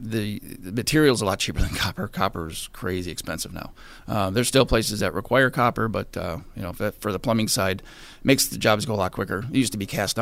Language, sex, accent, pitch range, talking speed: English, male, American, 95-115 Hz, 245 wpm